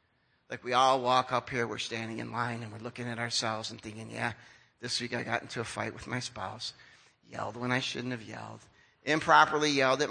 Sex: male